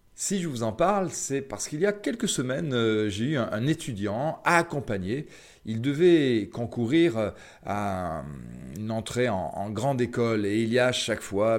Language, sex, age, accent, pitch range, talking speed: French, male, 40-59, French, 105-150 Hz, 170 wpm